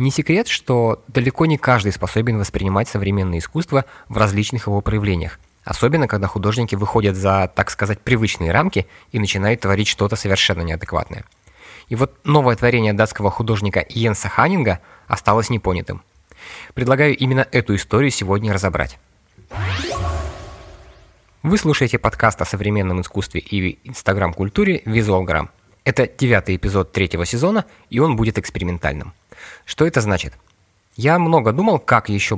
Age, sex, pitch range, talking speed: 20-39, male, 95-125 Hz, 130 wpm